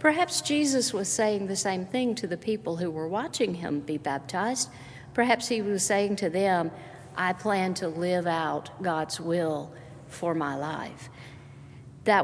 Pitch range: 170-250 Hz